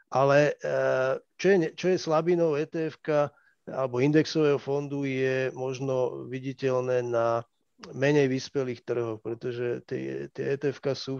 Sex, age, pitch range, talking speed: male, 40-59, 130-150 Hz, 115 wpm